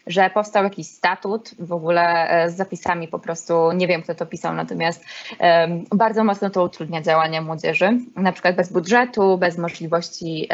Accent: native